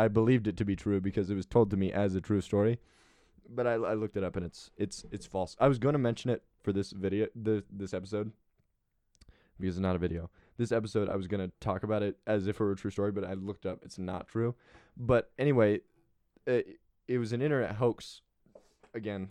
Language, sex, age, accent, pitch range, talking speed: English, male, 20-39, American, 95-125 Hz, 240 wpm